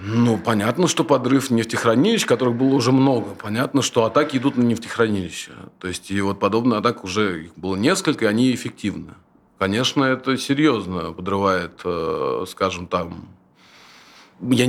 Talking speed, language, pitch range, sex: 145 wpm, Russian, 100-120 Hz, male